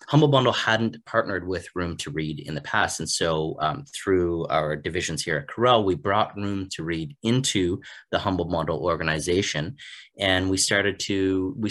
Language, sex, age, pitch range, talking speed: English, male, 30-49, 80-100 Hz, 180 wpm